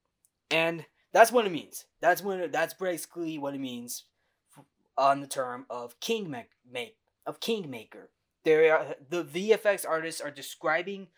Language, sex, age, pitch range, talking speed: English, male, 20-39, 135-195 Hz, 140 wpm